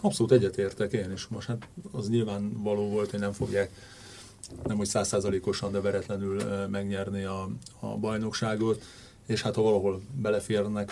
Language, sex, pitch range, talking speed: Hungarian, male, 100-120 Hz, 145 wpm